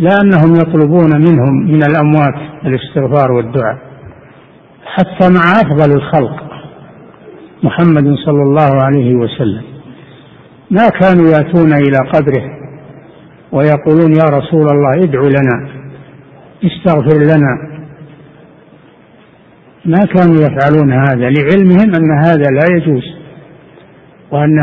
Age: 60-79